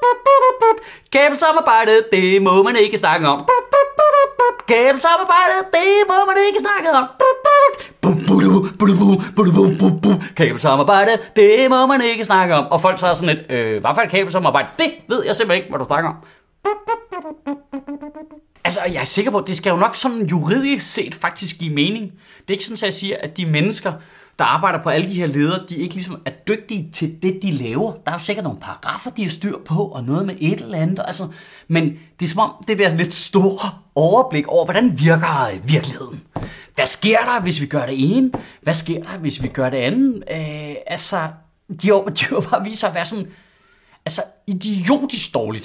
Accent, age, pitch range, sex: native, 30-49, 160-245 Hz, male